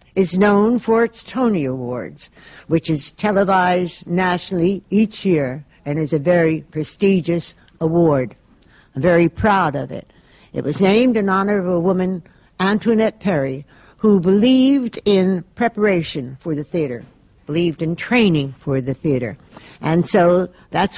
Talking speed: 140 wpm